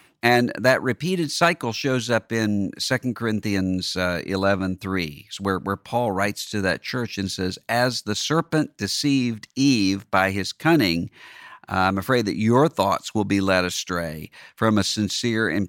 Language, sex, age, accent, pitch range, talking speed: English, male, 50-69, American, 95-125 Hz, 165 wpm